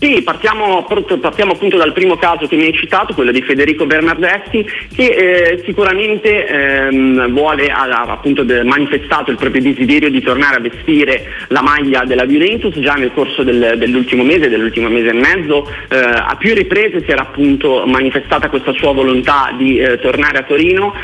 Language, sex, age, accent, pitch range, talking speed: Italian, male, 30-49, native, 125-160 Hz, 170 wpm